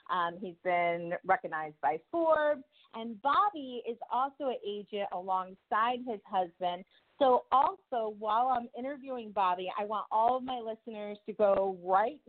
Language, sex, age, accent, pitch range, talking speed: English, female, 30-49, American, 170-220 Hz, 145 wpm